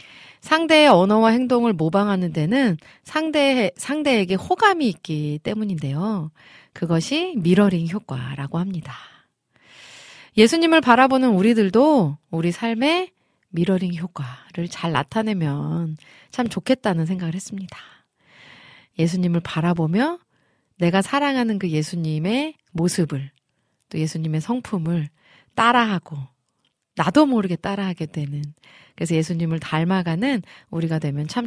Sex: female